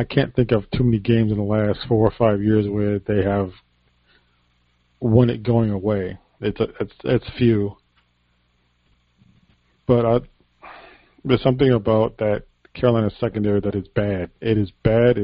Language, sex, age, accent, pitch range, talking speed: English, male, 40-59, American, 90-120 Hz, 160 wpm